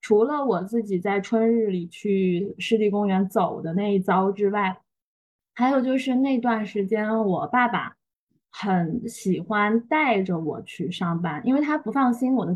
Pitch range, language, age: 185-240 Hz, Chinese, 20-39